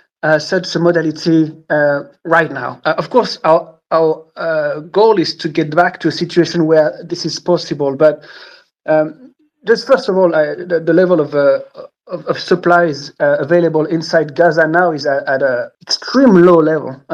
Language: English